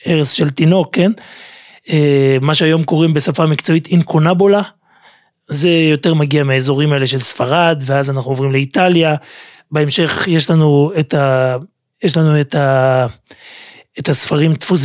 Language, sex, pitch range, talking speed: Hebrew, male, 150-210 Hz, 135 wpm